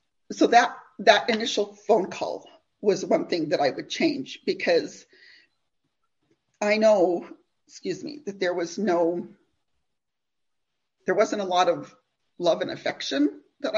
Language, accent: English, American